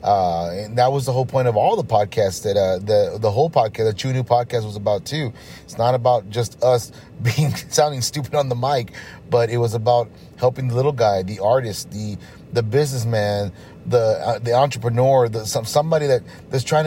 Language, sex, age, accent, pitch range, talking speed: English, male, 30-49, American, 115-135 Hz, 205 wpm